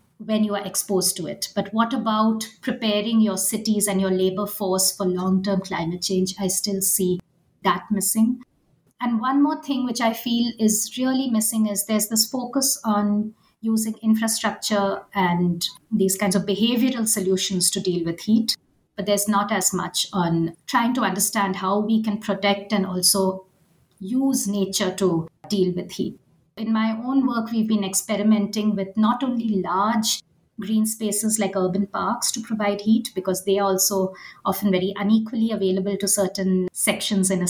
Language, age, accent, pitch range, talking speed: English, 50-69, Indian, 190-220 Hz, 170 wpm